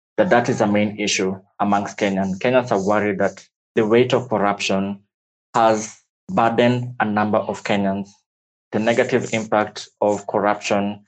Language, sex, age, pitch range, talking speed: English, male, 20-39, 105-120 Hz, 145 wpm